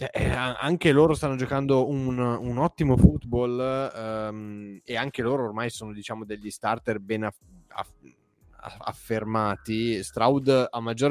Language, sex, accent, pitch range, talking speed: Italian, male, native, 105-135 Hz, 135 wpm